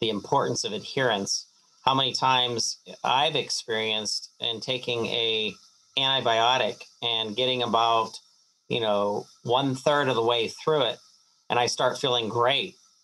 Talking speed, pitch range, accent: 140 wpm, 115-135 Hz, American